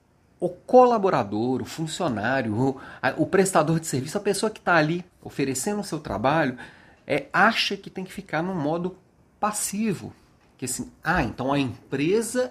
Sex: male